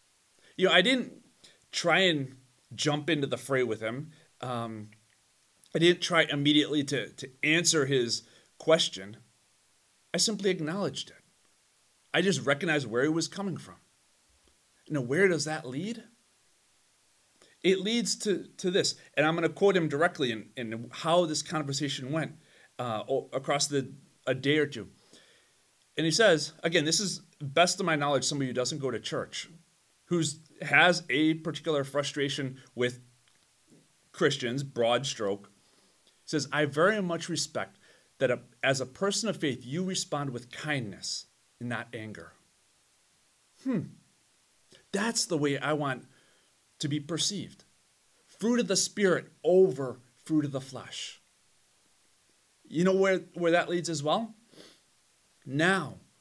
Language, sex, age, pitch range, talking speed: English, male, 30-49, 130-175 Hz, 140 wpm